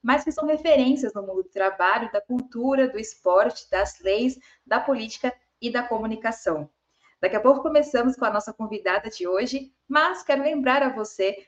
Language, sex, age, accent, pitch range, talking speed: Portuguese, female, 20-39, Brazilian, 200-265 Hz, 180 wpm